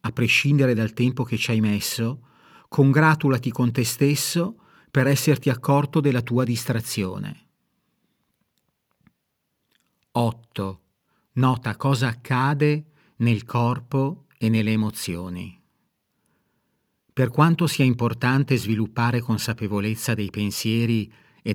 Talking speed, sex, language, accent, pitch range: 100 wpm, male, Italian, native, 110-140 Hz